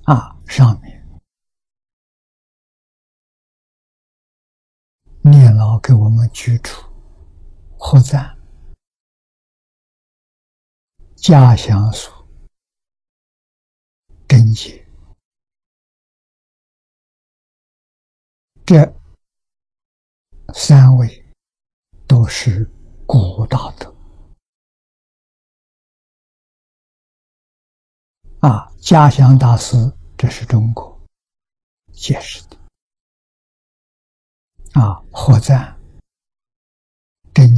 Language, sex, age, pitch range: Chinese, male, 60-79, 80-130 Hz